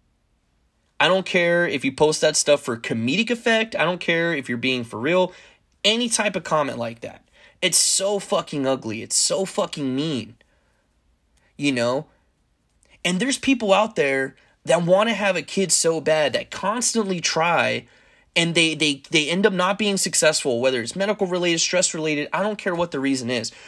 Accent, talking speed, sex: American, 185 wpm, male